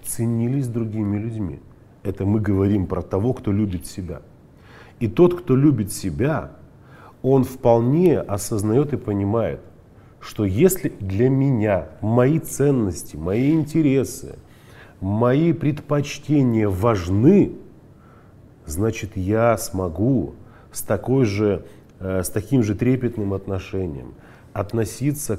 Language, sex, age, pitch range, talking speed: Russian, male, 30-49, 105-135 Hz, 105 wpm